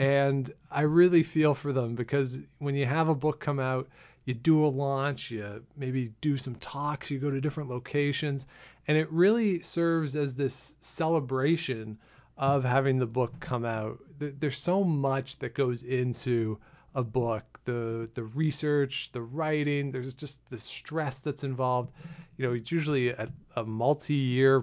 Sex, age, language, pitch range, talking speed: male, 40-59, English, 125-145 Hz, 165 wpm